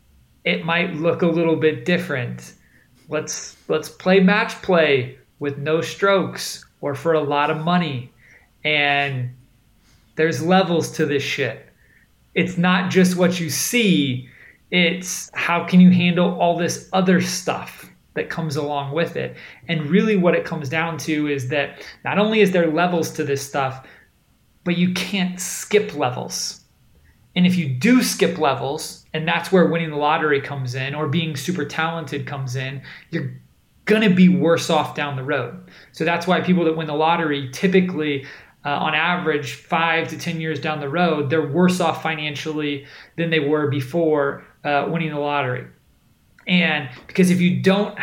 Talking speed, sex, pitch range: 165 wpm, male, 145-175 Hz